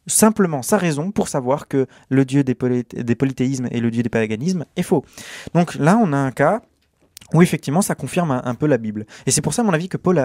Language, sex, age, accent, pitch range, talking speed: French, male, 20-39, French, 120-160 Hz, 250 wpm